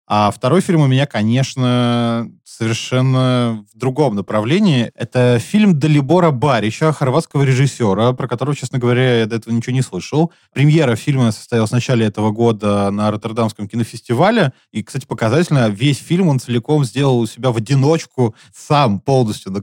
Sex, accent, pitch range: male, native, 120-155 Hz